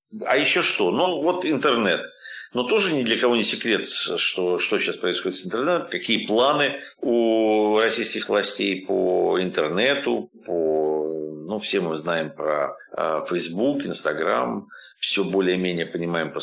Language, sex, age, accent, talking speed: Russian, male, 50-69, native, 140 wpm